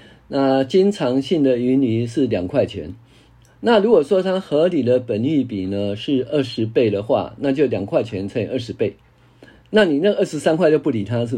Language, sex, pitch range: Chinese, male, 115-155 Hz